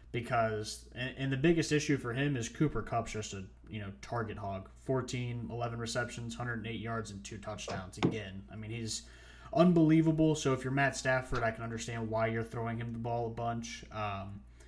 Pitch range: 110-130 Hz